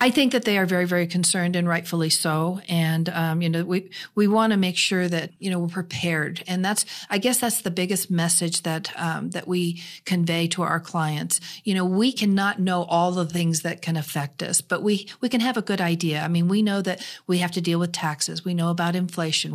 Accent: American